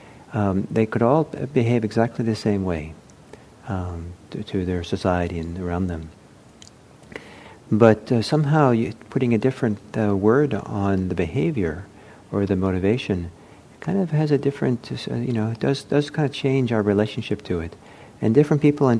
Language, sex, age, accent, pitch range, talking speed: English, male, 50-69, American, 95-115 Hz, 165 wpm